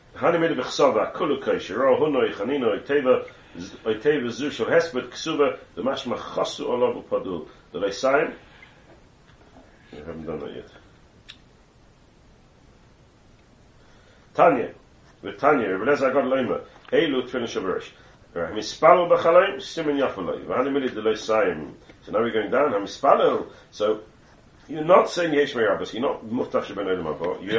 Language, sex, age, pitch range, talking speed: English, male, 40-59, 115-170 Hz, 135 wpm